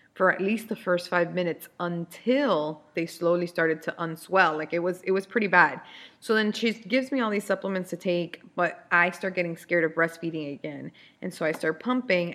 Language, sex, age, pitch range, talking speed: English, female, 20-39, 170-230 Hz, 210 wpm